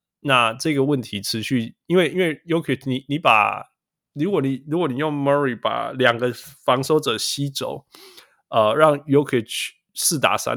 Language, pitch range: Chinese, 115-145 Hz